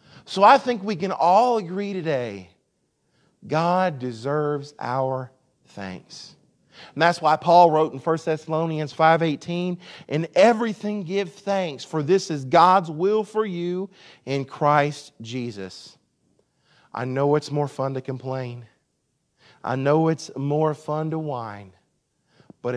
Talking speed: 130 wpm